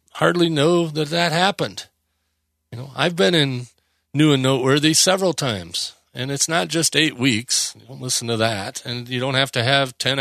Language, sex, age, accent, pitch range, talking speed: English, male, 40-59, American, 115-160 Hz, 190 wpm